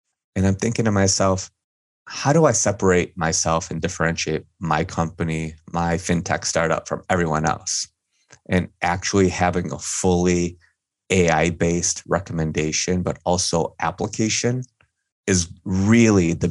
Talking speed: 125 wpm